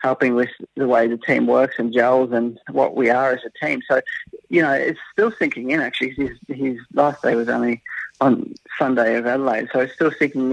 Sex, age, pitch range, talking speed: male, 30-49, 125-145 Hz, 215 wpm